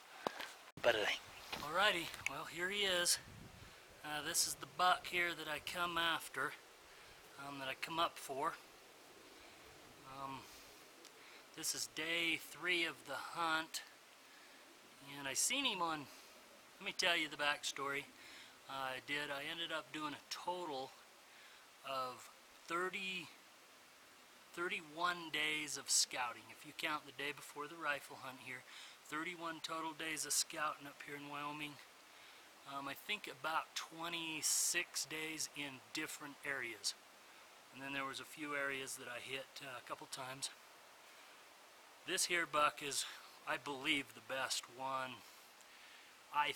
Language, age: English, 30-49